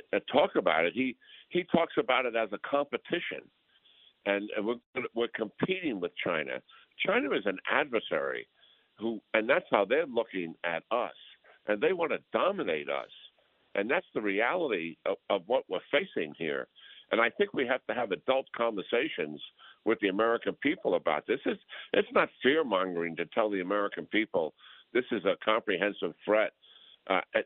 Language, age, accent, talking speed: English, 60-79, American, 165 wpm